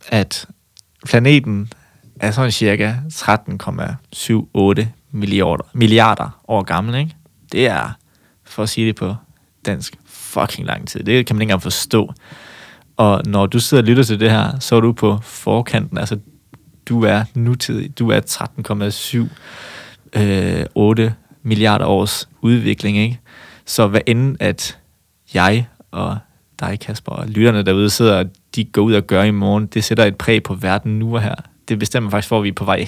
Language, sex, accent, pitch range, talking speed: Danish, male, native, 105-120 Hz, 165 wpm